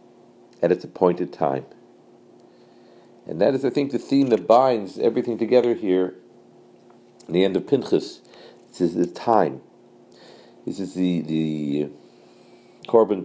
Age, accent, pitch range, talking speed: 50-69, American, 90-115 Hz, 135 wpm